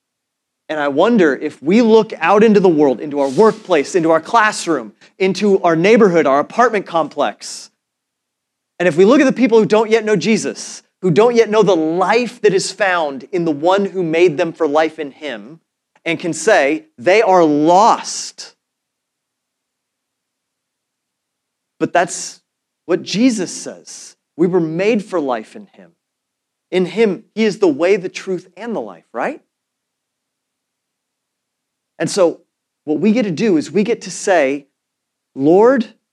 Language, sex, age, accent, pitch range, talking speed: English, male, 30-49, American, 170-220 Hz, 160 wpm